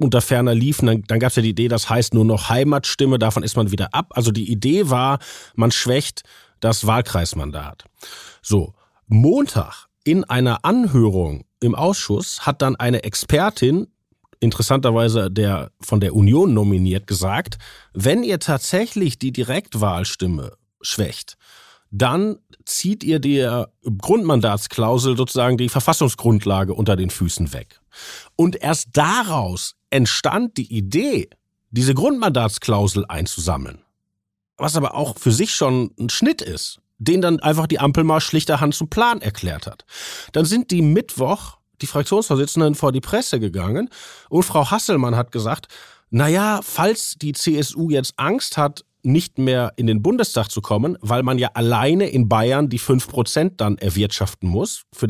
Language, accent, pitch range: German, German, 105-150 Hz